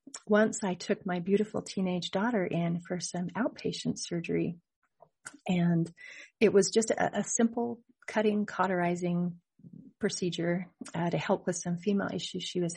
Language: English